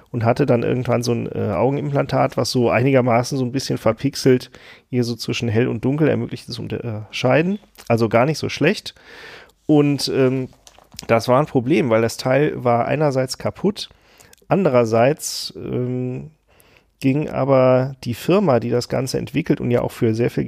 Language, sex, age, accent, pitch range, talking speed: German, male, 40-59, German, 115-140 Hz, 165 wpm